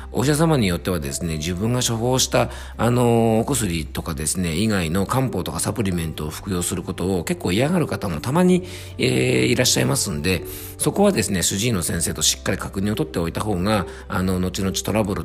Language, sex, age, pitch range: Japanese, male, 50-69, 85-115 Hz